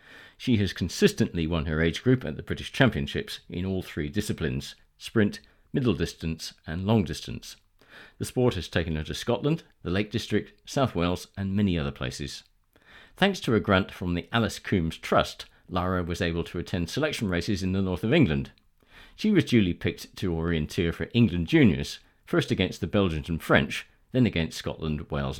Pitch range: 80-110 Hz